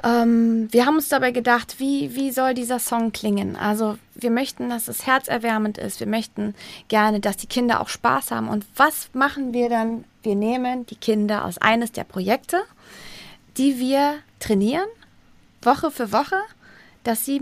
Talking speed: 165 wpm